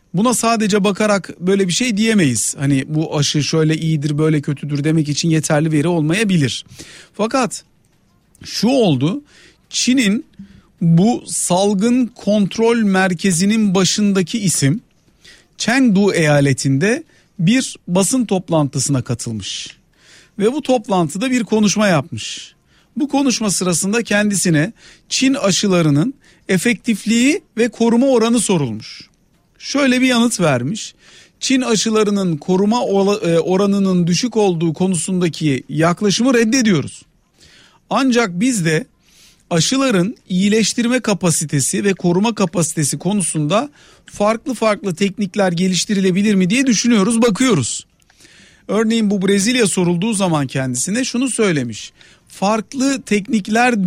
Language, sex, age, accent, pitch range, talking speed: Turkish, male, 50-69, native, 160-225 Hz, 105 wpm